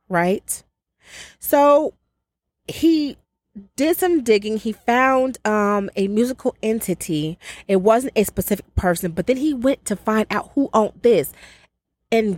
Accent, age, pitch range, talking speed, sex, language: American, 30-49, 165-215 Hz, 135 wpm, female, English